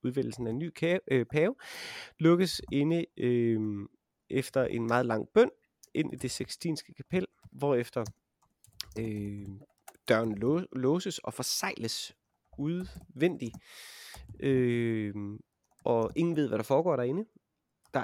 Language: Danish